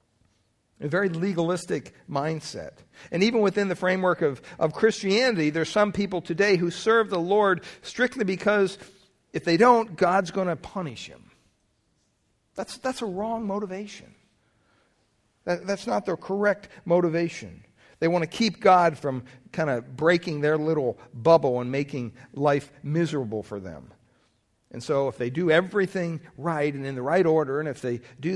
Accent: American